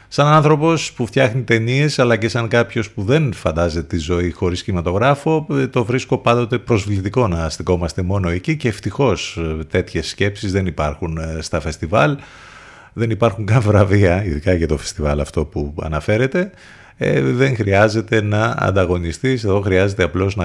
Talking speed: 150 wpm